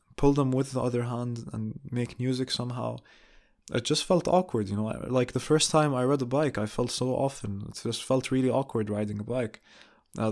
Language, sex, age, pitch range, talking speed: English, male, 20-39, 115-135 Hz, 220 wpm